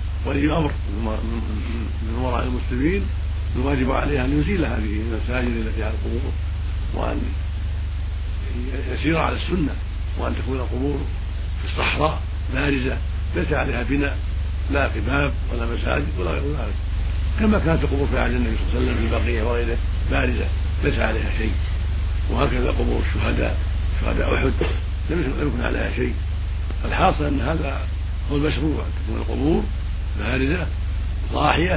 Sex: male